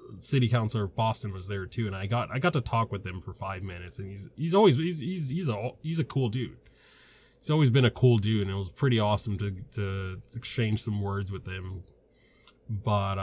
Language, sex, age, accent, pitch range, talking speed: English, male, 20-39, American, 105-130 Hz, 225 wpm